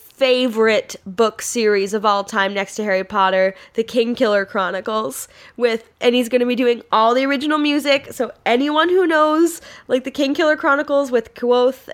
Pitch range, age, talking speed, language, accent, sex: 200-255 Hz, 10-29, 170 wpm, English, American, female